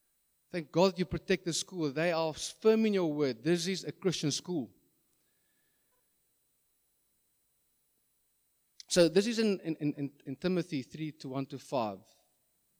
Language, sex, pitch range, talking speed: English, male, 130-165 Hz, 140 wpm